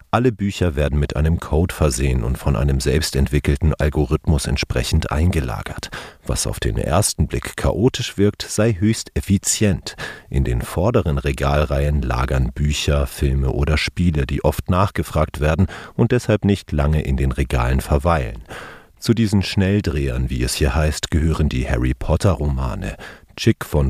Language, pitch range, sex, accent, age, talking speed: German, 70-95 Hz, male, German, 40-59, 145 wpm